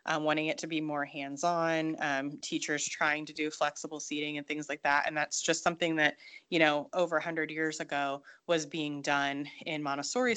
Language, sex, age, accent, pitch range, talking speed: English, female, 20-39, American, 150-175 Hz, 205 wpm